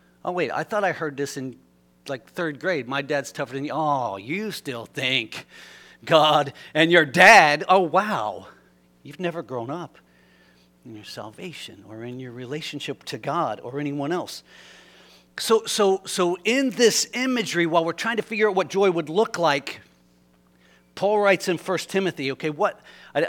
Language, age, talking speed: English, 50-69, 175 wpm